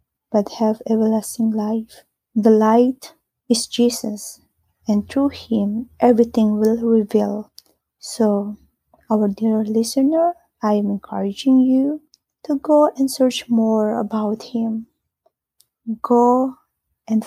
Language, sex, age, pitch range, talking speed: English, female, 20-39, 220-245 Hz, 110 wpm